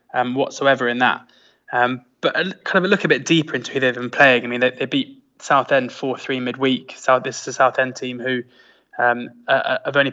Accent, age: British, 20-39